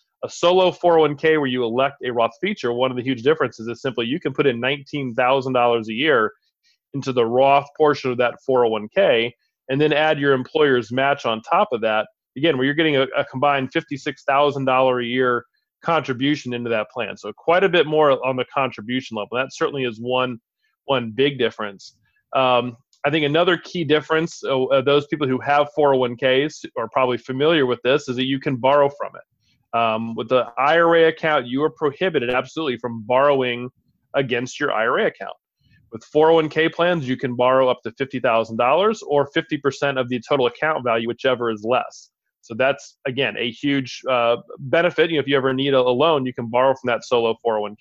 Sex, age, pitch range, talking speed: male, 30-49, 125-150 Hz, 190 wpm